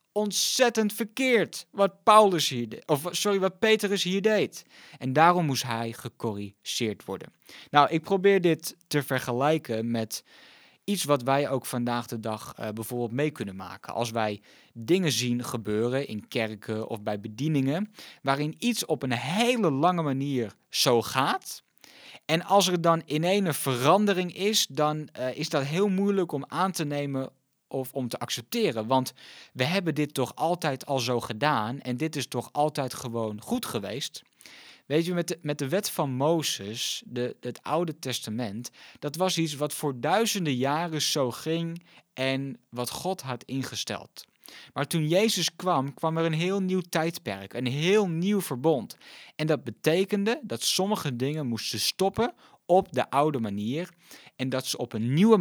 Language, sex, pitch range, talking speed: Dutch, male, 125-175 Hz, 165 wpm